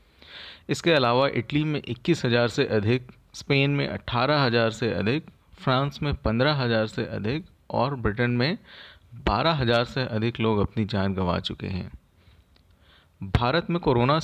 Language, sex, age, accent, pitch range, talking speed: Hindi, male, 40-59, native, 105-135 Hz, 150 wpm